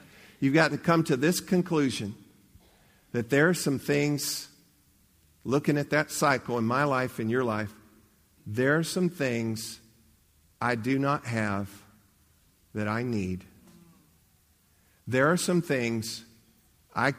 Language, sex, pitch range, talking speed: English, male, 100-140 Hz, 135 wpm